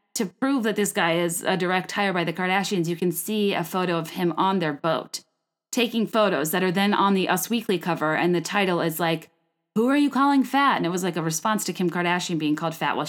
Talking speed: 250 wpm